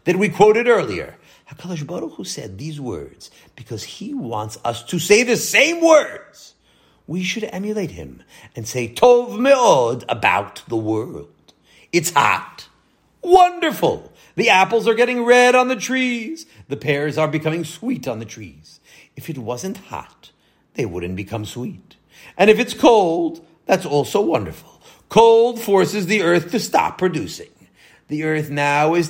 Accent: American